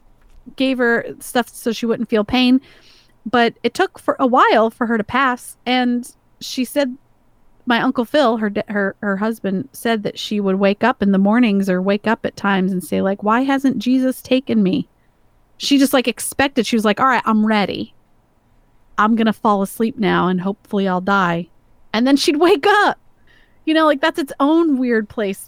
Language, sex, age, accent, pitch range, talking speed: English, female, 30-49, American, 200-250 Hz, 195 wpm